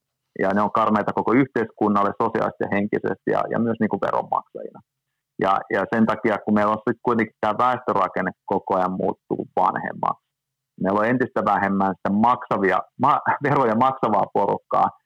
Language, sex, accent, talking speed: Finnish, male, native, 150 wpm